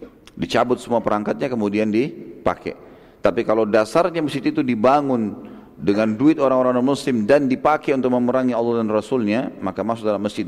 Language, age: English, 40-59